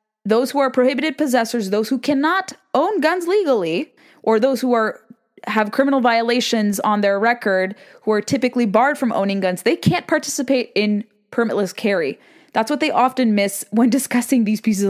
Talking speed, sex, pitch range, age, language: 175 wpm, female, 200-245 Hz, 20-39, English